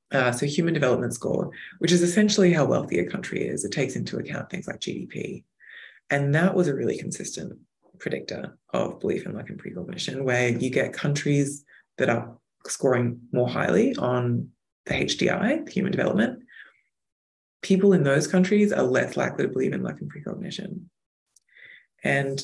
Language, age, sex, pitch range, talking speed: English, 20-39, female, 125-180 Hz, 165 wpm